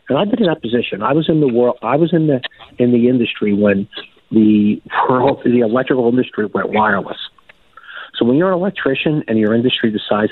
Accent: American